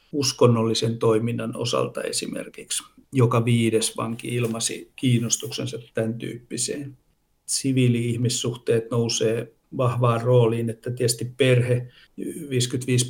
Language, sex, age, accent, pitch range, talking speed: Finnish, male, 60-79, native, 115-125 Hz, 85 wpm